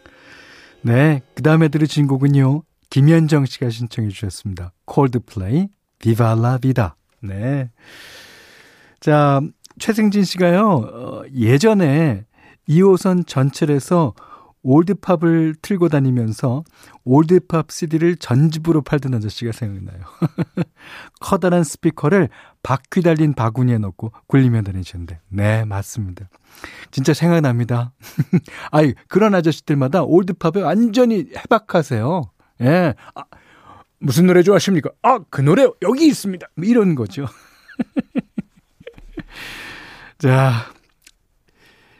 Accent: native